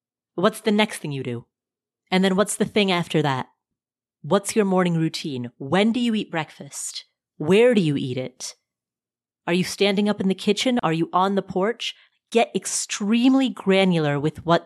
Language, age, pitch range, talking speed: English, 30-49, 145-195 Hz, 180 wpm